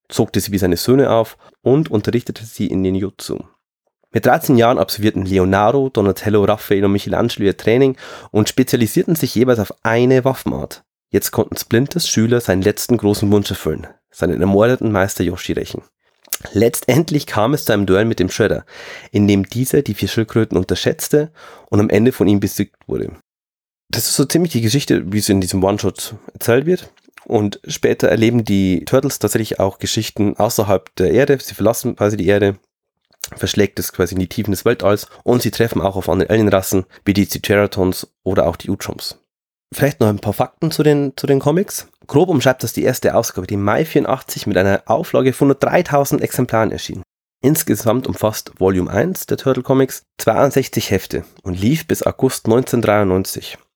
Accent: German